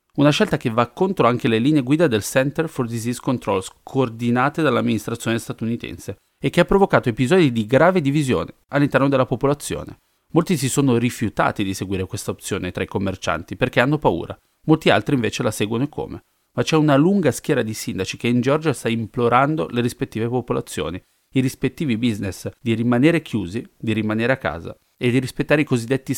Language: English